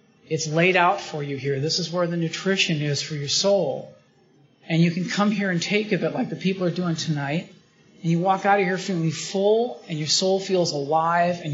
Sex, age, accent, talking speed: male, 40-59, American, 230 wpm